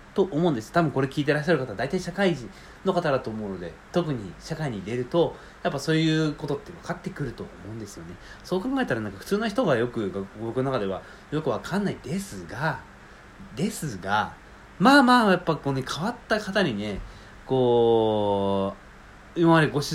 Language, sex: Japanese, male